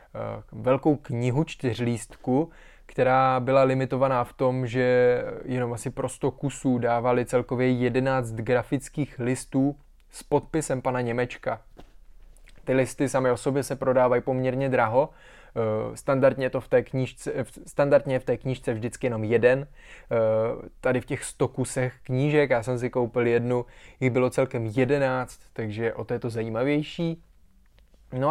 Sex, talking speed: male, 130 wpm